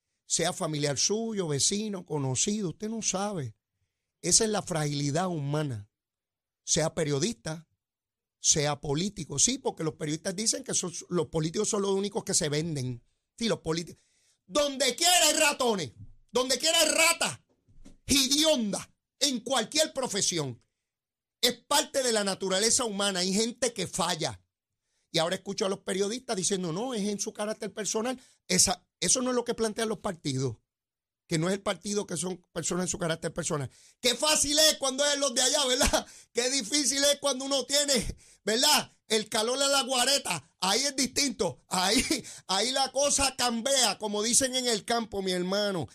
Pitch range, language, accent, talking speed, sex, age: 160-245 Hz, Spanish, American, 165 wpm, male, 40-59